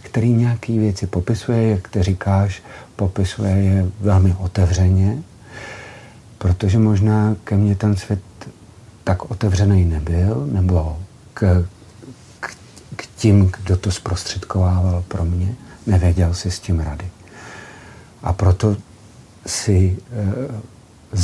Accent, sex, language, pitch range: native, male, Czech, 95-110 Hz